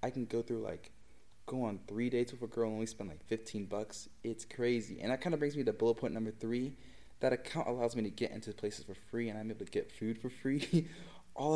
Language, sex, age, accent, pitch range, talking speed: English, male, 20-39, American, 110-130 Hz, 250 wpm